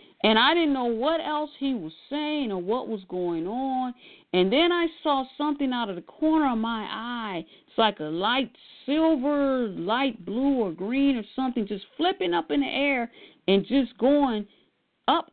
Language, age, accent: English, 40-59, American